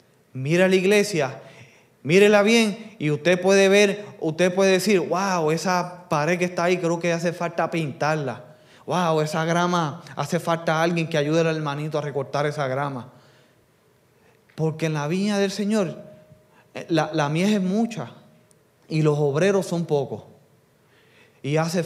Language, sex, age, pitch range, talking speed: English, male, 20-39, 140-175 Hz, 150 wpm